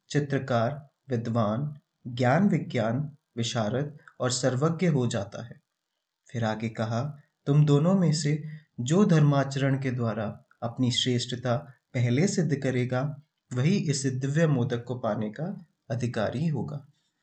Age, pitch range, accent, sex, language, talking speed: 30-49, 125-150 Hz, native, male, Hindi, 110 wpm